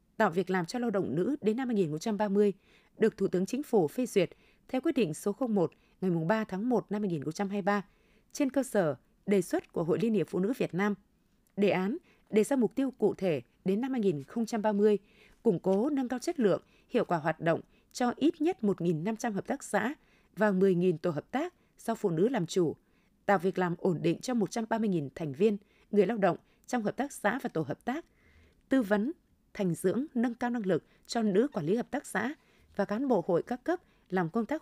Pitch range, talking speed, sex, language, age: 190-240 Hz, 215 wpm, female, Vietnamese, 20-39